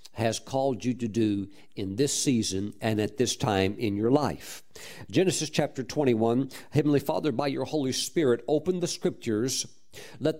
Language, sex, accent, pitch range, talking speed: English, male, American, 115-145 Hz, 160 wpm